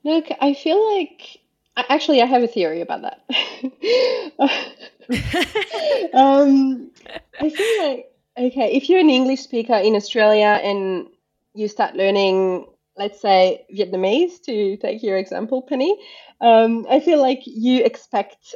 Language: English